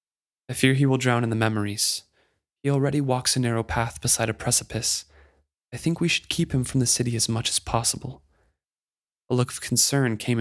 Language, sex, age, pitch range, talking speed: English, male, 20-39, 110-140 Hz, 200 wpm